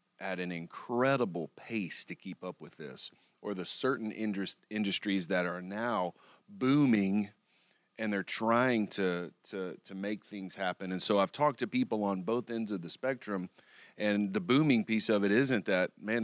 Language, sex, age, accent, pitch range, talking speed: English, male, 30-49, American, 90-110 Hz, 175 wpm